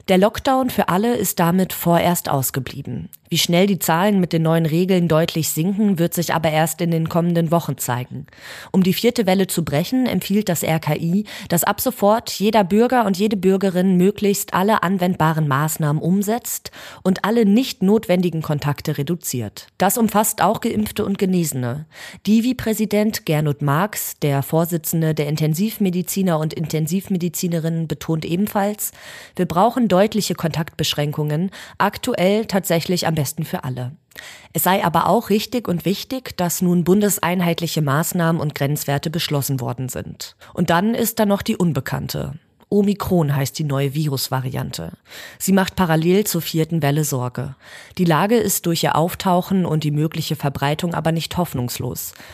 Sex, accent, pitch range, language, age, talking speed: female, German, 155-200 Hz, German, 20-39, 150 wpm